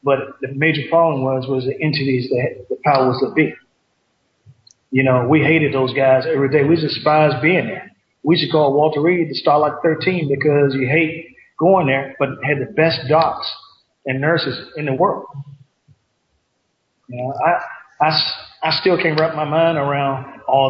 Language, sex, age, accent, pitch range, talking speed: English, male, 40-59, American, 135-155 Hz, 185 wpm